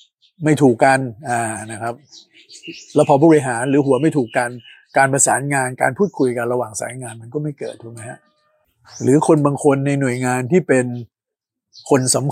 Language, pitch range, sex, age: Thai, 120-150 Hz, male, 60-79